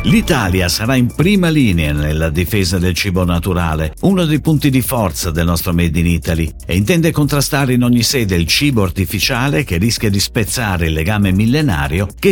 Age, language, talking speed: 50-69, Italian, 180 wpm